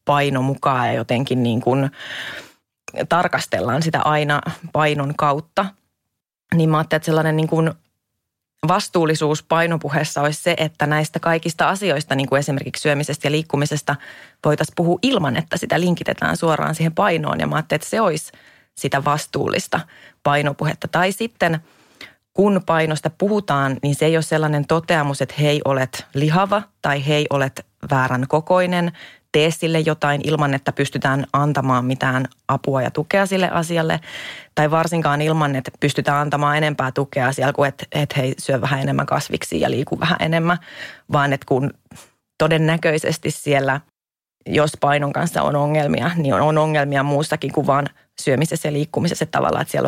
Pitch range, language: 140-165 Hz, Finnish